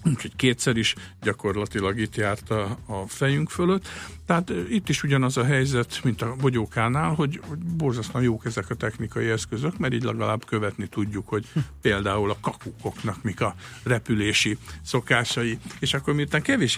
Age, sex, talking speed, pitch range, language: 60-79, male, 155 wpm, 110-130 Hz, Hungarian